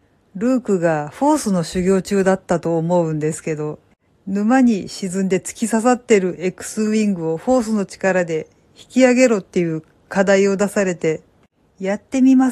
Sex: female